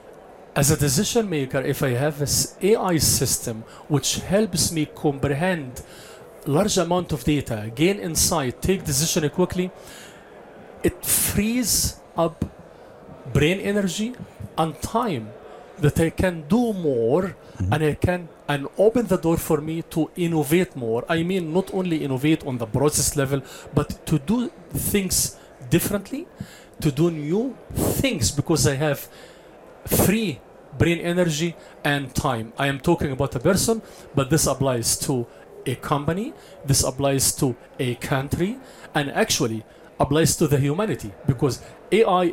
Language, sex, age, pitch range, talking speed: English, male, 40-59, 140-180 Hz, 140 wpm